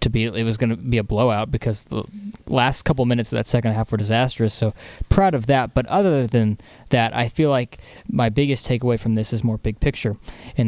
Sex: male